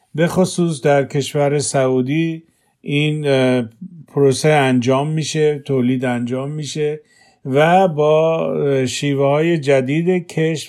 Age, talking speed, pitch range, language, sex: 50-69, 95 wpm, 135-155 Hz, Persian, male